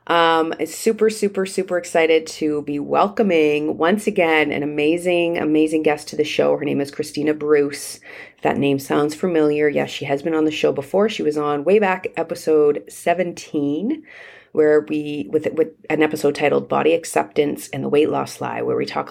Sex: female